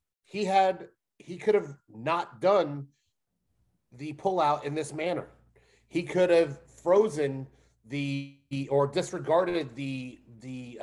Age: 30-49